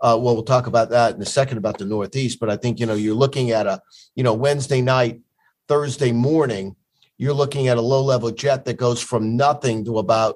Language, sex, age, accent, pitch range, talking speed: English, male, 50-69, American, 120-145 Hz, 225 wpm